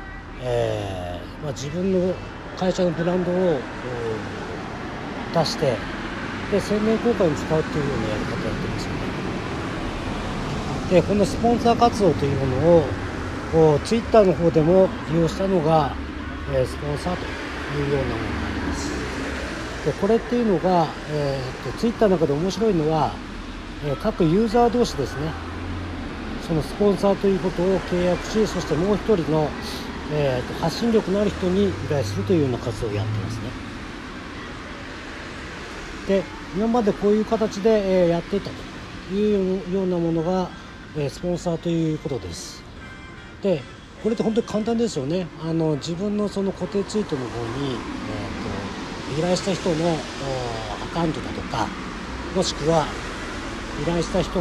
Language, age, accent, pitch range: Japanese, 40-59, native, 140-195 Hz